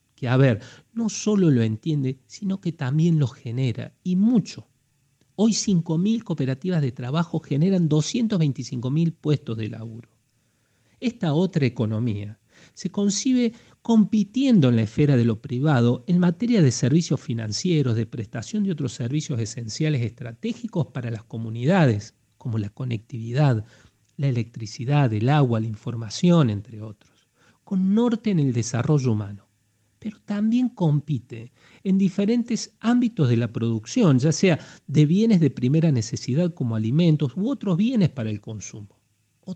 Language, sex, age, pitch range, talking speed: Spanish, male, 40-59, 115-180 Hz, 140 wpm